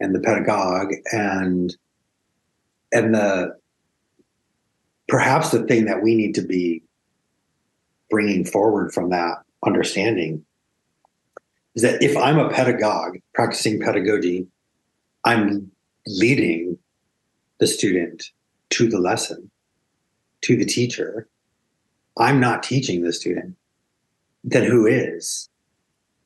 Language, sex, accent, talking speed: English, male, American, 105 wpm